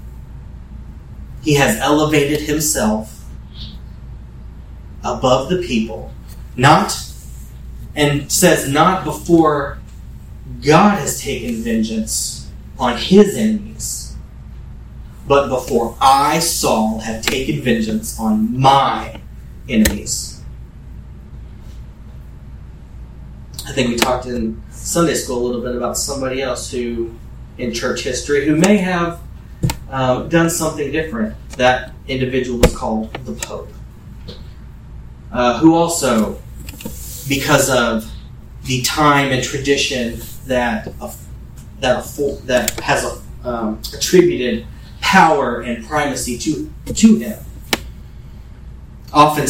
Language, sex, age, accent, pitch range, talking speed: English, male, 30-49, American, 110-155 Hz, 105 wpm